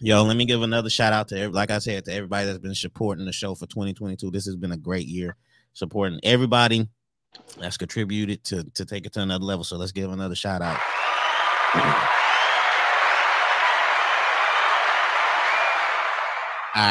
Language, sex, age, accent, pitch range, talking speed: English, male, 30-49, American, 95-115 Hz, 150 wpm